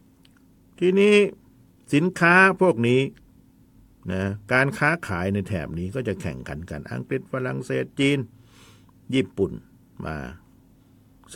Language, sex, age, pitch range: Thai, male, 60-79, 90-130 Hz